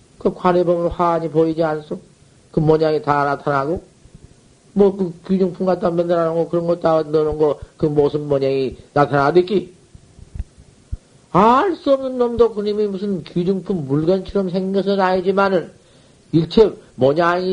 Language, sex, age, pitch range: Korean, male, 50-69, 145-185 Hz